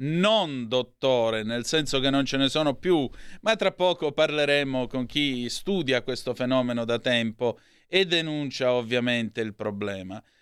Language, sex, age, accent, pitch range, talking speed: Italian, male, 30-49, native, 120-145 Hz, 150 wpm